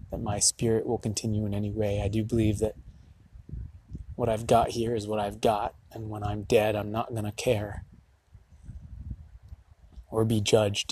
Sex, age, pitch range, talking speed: male, 20-39, 95-115 Hz, 175 wpm